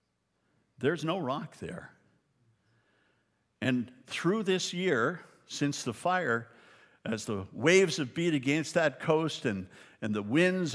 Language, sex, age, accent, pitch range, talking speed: English, male, 50-69, American, 120-165 Hz, 130 wpm